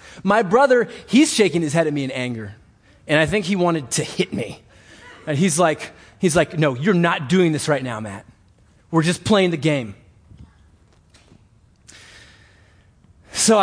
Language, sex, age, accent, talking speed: English, male, 30-49, American, 165 wpm